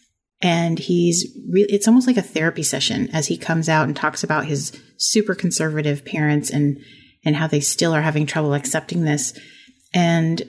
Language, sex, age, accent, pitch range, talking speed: English, female, 30-49, American, 150-180 Hz, 170 wpm